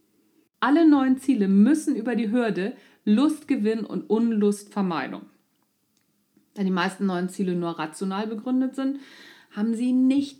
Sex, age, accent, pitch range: female, 40-59, German, 210-285 Hz